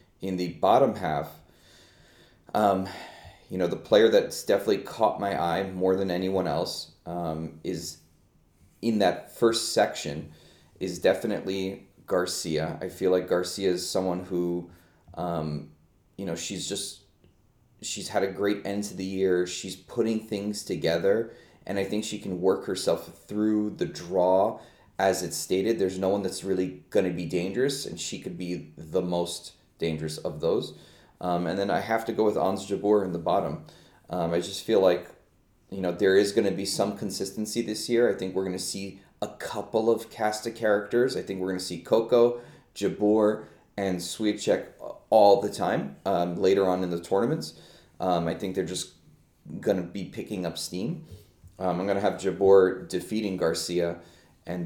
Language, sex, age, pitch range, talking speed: English, male, 30-49, 85-105 Hz, 175 wpm